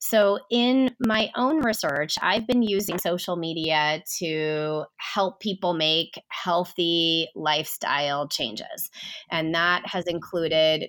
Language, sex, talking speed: English, female, 115 wpm